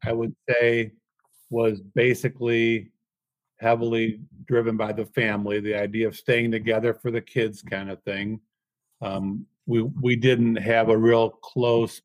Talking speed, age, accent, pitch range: 145 wpm, 50-69, American, 110-120 Hz